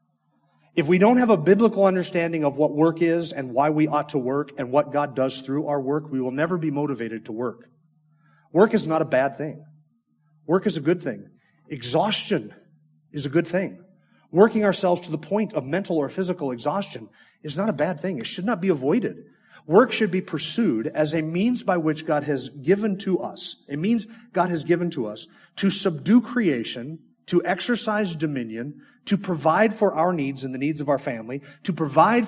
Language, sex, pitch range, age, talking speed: English, male, 150-195 Hz, 30-49, 200 wpm